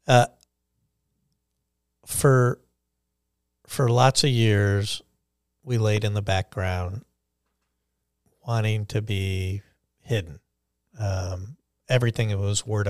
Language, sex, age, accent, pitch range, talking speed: English, male, 50-69, American, 95-120 Hz, 95 wpm